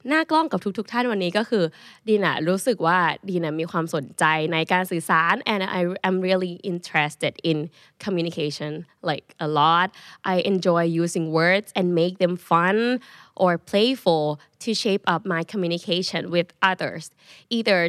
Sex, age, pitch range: female, 20-39, 165-210 Hz